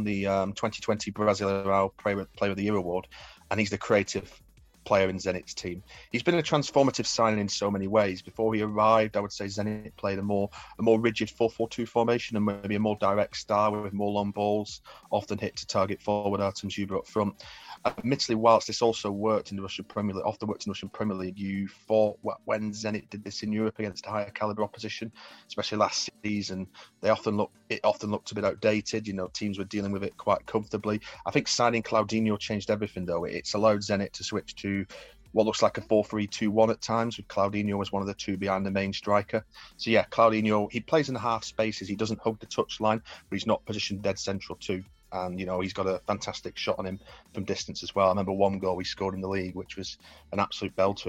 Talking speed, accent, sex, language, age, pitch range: 225 wpm, British, male, English, 30-49, 95-110 Hz